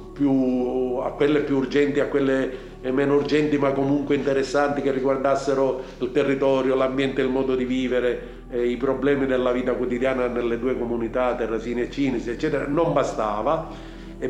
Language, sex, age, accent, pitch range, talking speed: Italian, male, 50-69, native, 120-145 Hz, 150 wpm